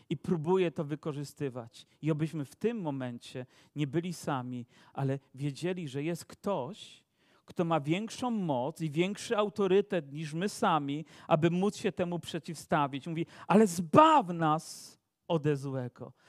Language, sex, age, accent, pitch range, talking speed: Polish, male, 40-59, native, 165-250 Hz, 140 wpm